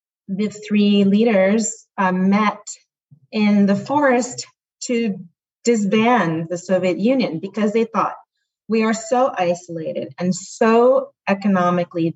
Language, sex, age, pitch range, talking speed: English, female, 30-49, 170-220 Hz, 115 wpm